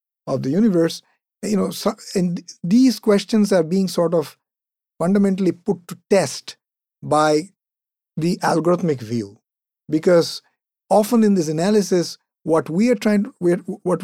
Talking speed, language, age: 130 wpm, English, 50-69